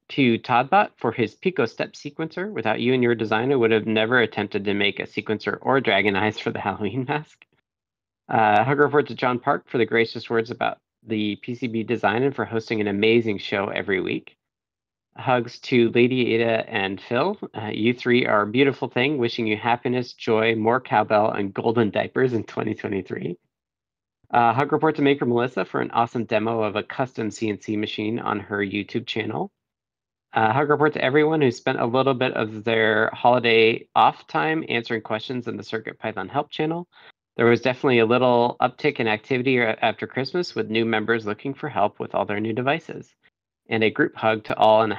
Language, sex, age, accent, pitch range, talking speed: English, male, 40-59, American, 110-130 Hz, 190 wpm